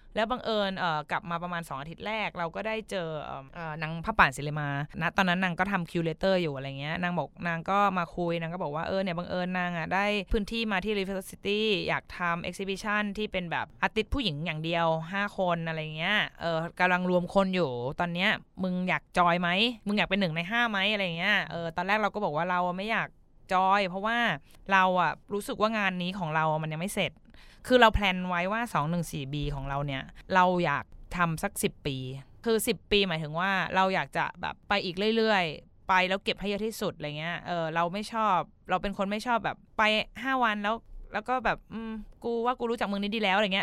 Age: 20-39